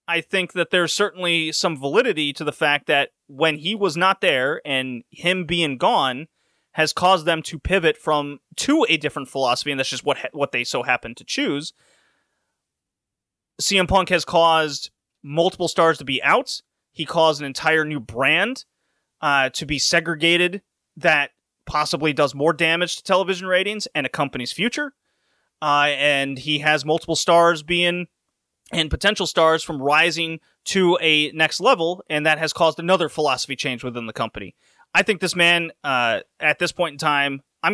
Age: 30-49